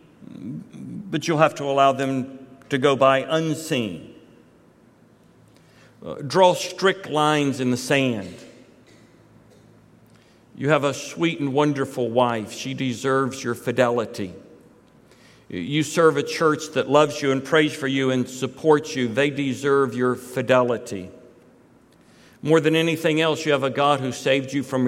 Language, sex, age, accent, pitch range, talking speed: English, male, 60-79, American, 125-145 Hz, 135 wpm